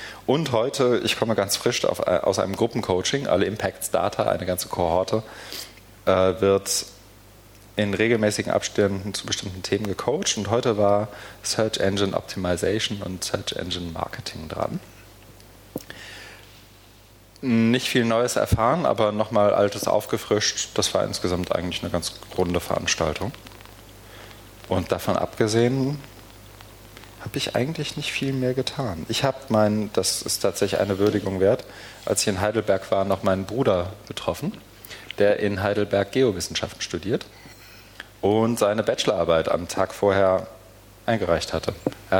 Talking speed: 130 wpm